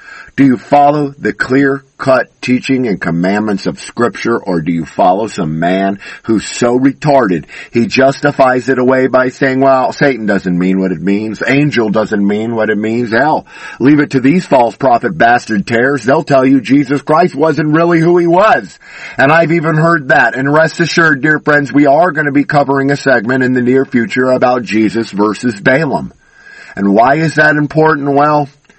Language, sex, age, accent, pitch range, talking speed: English, male, 50-69, American, 120-150 Hz, 185 wpm